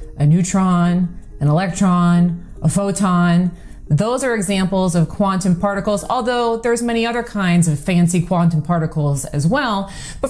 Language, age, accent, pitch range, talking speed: English, 30-49, American, 170-230 Hz, 140 wpm